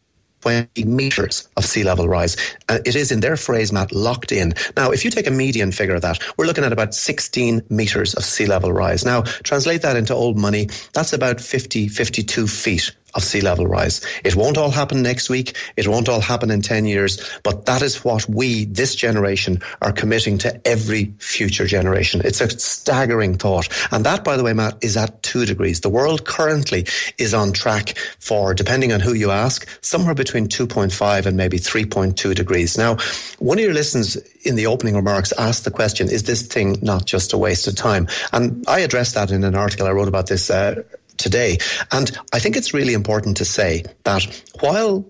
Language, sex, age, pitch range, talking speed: English, male, 30-49, 100-125 Hz, 200 wpm